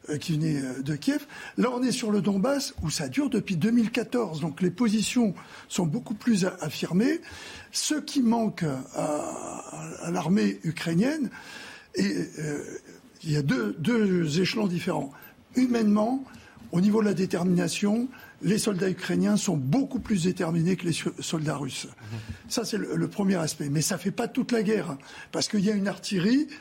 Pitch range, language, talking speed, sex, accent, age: 175-235 Hz, French, 160 wpm, male, French, 60-79